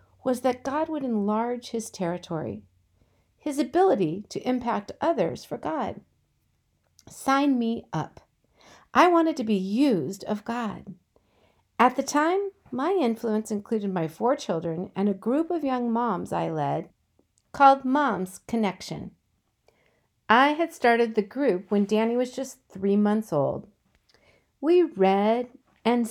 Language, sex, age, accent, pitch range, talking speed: English, female, 50-69, American, 195-270 Hz, 135 wpm